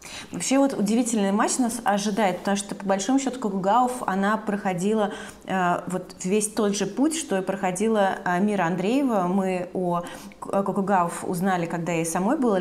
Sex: female